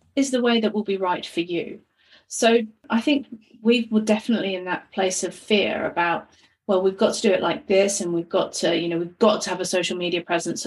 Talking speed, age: 240 wpm, 30-49